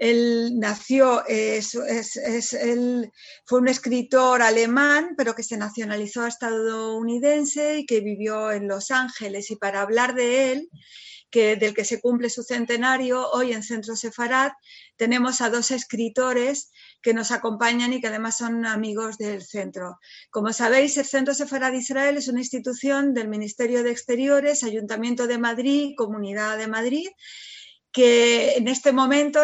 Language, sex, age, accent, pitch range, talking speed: Spanish, female, 40-59, Spanish, 230-265 Hz, 155 wpm